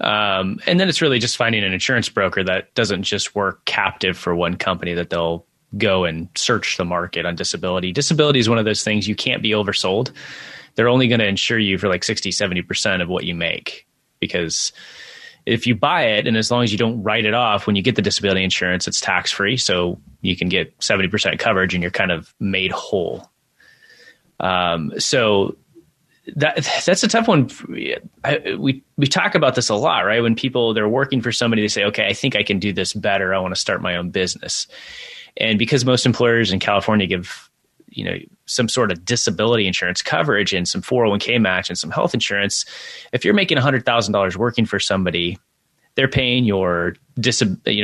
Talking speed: 200 wpm